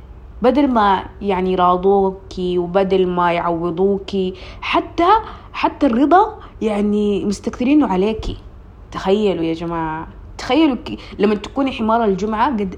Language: Arabic